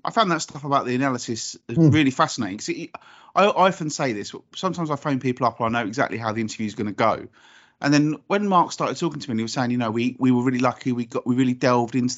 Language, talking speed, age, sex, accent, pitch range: English, 270 wpm, 30-49, male, British, 120-155 Hz